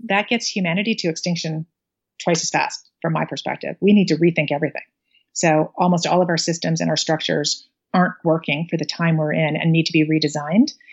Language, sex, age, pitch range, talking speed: English, female, 30-49, 155-180 Hz, 205 wpm